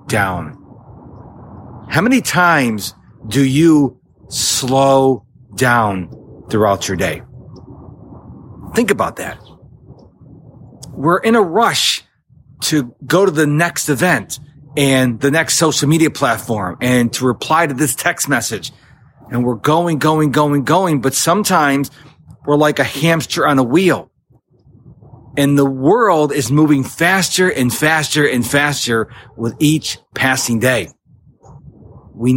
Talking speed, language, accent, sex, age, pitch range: 125 wpm, English, American, male, 40-59, 120-155 Hz